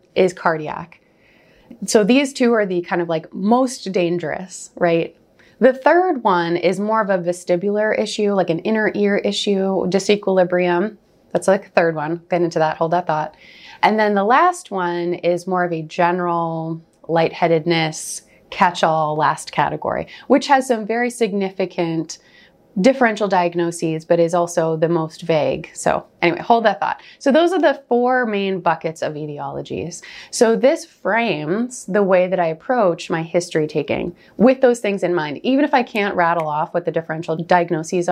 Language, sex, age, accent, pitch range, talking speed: English, female, 30-49, American, 165-210 Hz, 165 wpm